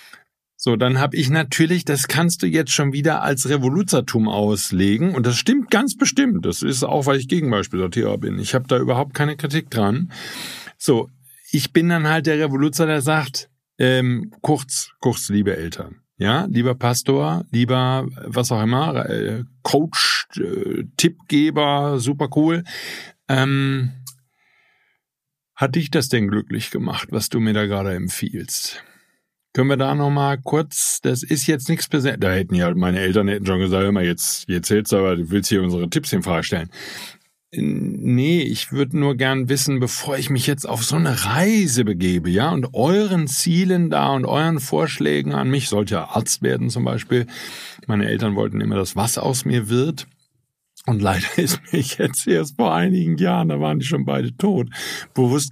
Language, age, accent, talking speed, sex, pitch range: German, 50-69, German, 175 wpm, male, 110-155 Hz